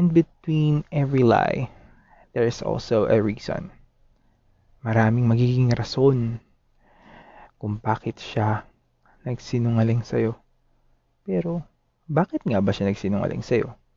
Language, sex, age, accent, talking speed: Filipino, male, 20-39, native, 105 wpm